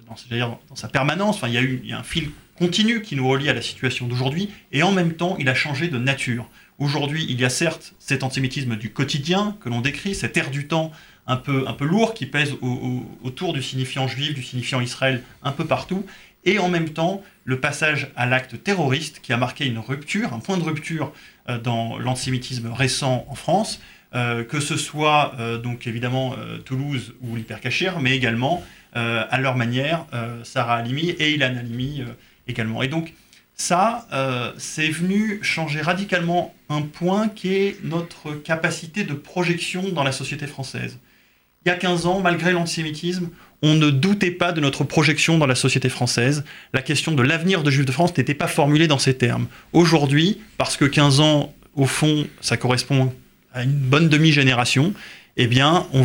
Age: 30-49